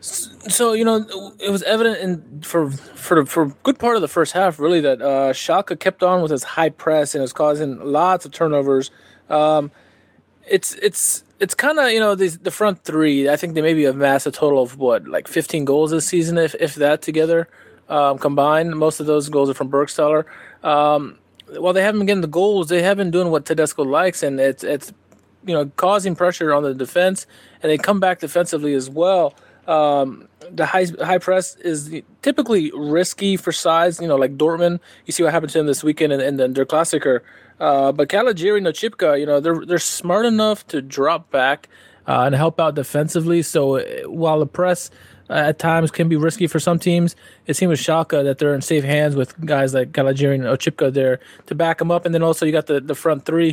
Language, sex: English, male